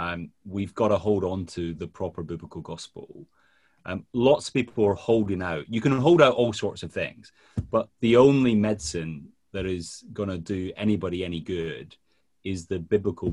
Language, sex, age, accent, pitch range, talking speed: English, male, 30-49, British, 85-120 Hz, 185 wpm